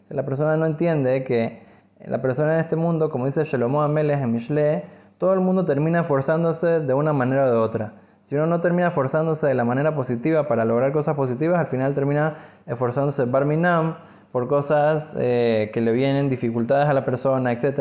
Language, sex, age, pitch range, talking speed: Spanish, male, 20-39, 130-155 Hz, 190 wpm